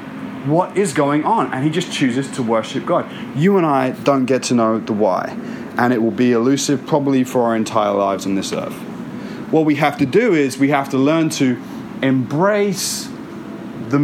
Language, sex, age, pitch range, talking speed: English, male, 30-49, 130-175 Hz, 195 wpm